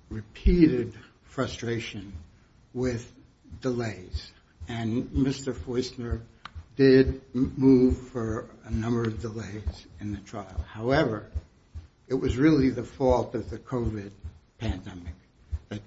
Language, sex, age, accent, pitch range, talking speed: English, male, 60-79, American, 95-120 Hz, 105 wpm